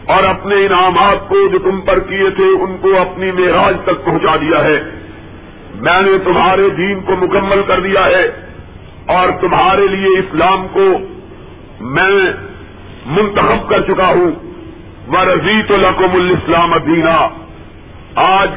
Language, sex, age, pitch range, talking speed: Urdu, male, 50-69, 165-195 Hz, 135 wpm